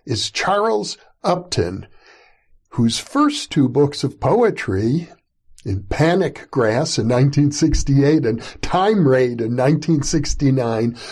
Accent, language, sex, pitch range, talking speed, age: American, English, male, 130-175 Hz, 105 wpm, 50-69